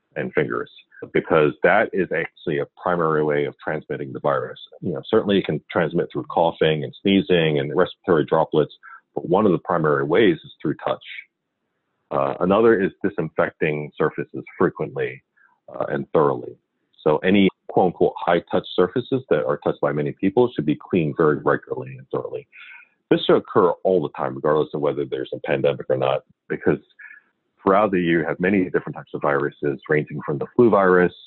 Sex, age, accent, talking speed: male, 40-59, American, 175 wpm